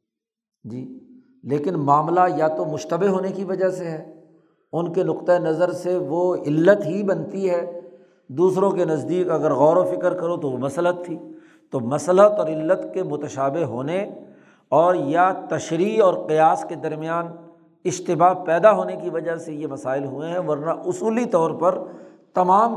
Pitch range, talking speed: 150-185 Hz, 165 wpm